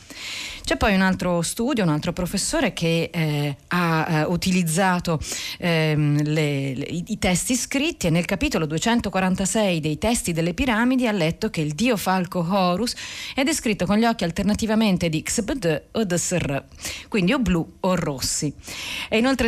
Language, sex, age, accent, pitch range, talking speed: Italian, female, 40-59, native, 160-210 Hz, 155 wpm